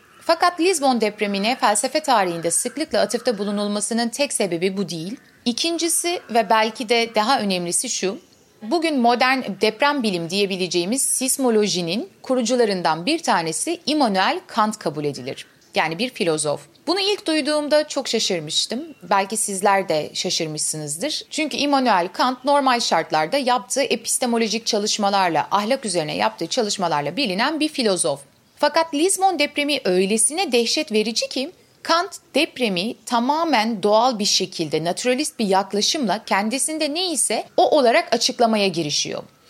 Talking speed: 125 wpm